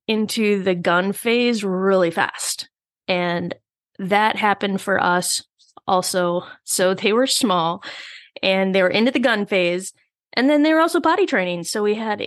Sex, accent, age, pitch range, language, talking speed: female, American, 20-39, 185-245 Hz, English, 160 wpm